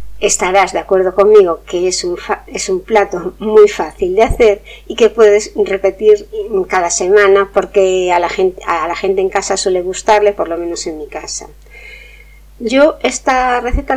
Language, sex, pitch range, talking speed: Spanish, female, 190-245 Hz, 175 wpm